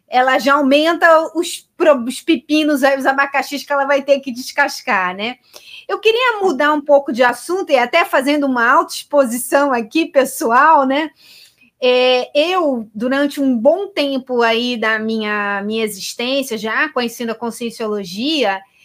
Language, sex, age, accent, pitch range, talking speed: Portuguese, female, 20-39, Brazilian, 250-315 Hz, 140 wpm